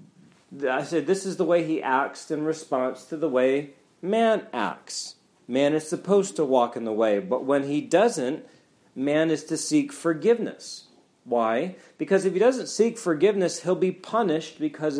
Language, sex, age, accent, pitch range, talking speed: English, male, 40-59, American, 130-175 Hz, 170 wpm